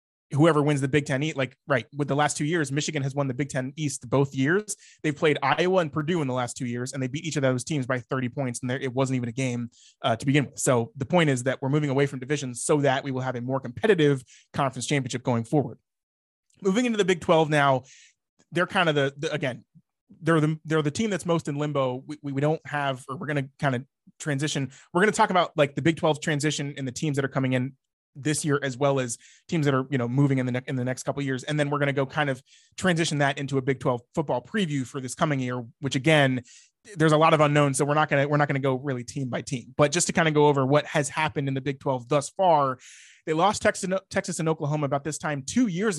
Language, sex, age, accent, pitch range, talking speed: English, male, 20-39, American, 130-155 Hz, 275 wpm